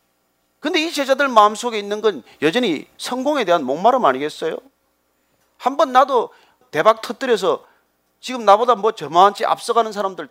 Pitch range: 170-280 Hz